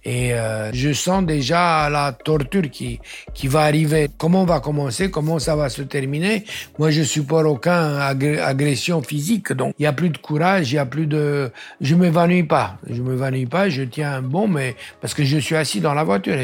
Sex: male